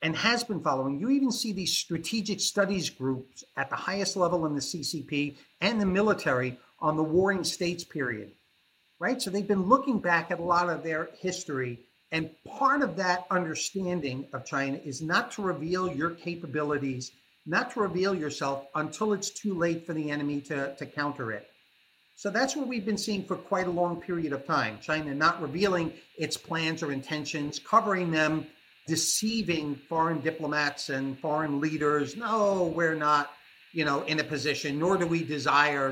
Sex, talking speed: male, 175 wpm